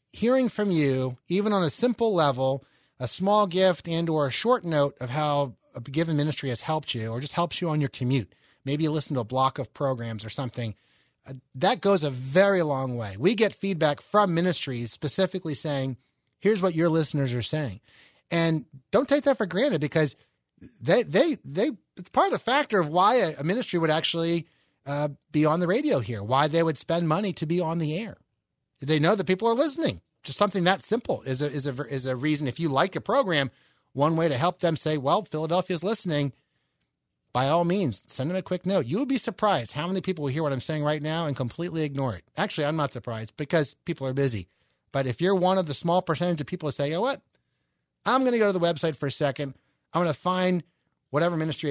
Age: 30-49